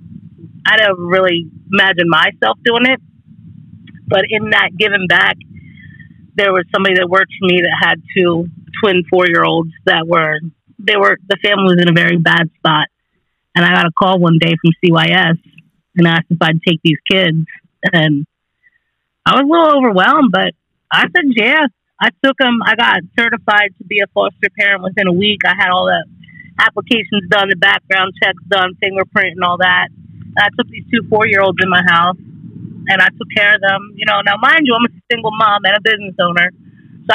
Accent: American